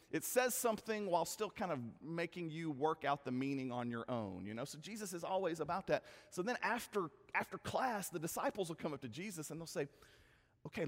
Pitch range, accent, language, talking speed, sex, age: 130-195 Hz, American, English, 220 wpm, male, 40-59